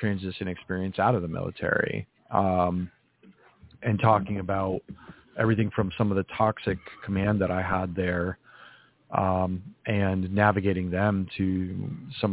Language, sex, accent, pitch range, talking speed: English, male, American, 95-110 Hz, 130 wpm